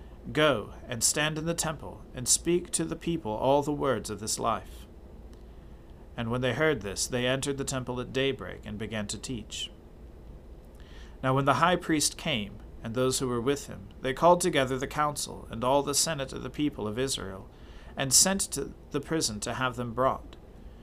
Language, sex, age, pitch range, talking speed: English, male, 40-59, 105-145 Hz, 195 wpm